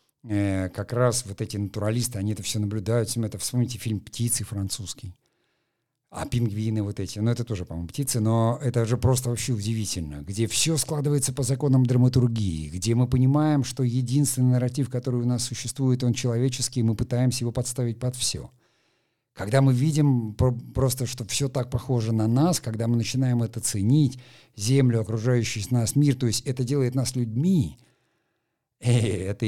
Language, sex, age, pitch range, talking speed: Russian, male, 50-69, 100-125 Hz, 165 wpm